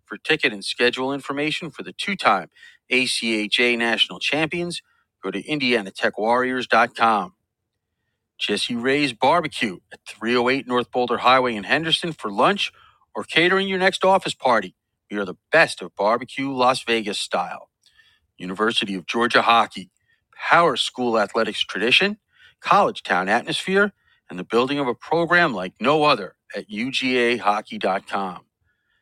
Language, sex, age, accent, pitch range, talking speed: English, male, 40-59, American, 110-150 Hz, 130 wpm